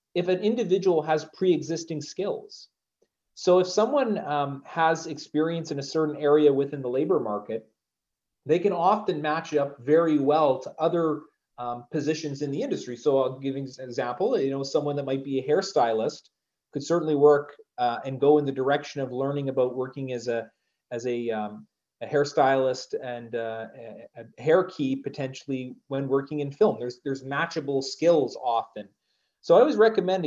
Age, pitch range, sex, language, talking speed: 30-49, 125-150 Hz, male, English, 175 wpm